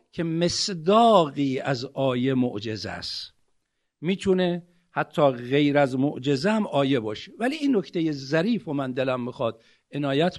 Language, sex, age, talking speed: Persian, male, 50-69, 135 wpm